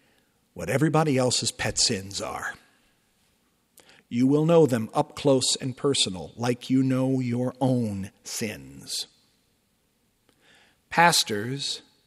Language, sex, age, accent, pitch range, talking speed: English, male, 50-69, American, 130-170 Hz, 105 wpm